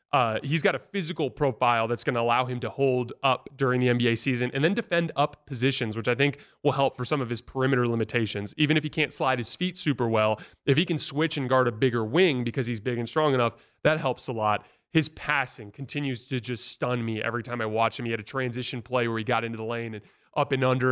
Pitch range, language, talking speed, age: 115-140 Hz, English, 255 wpm, 30-49